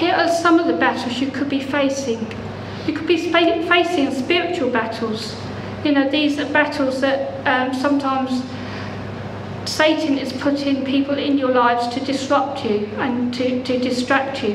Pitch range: 240-290 Hz